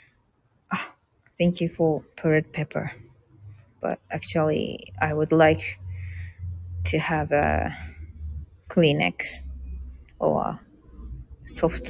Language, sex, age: Japanese, female, 20-39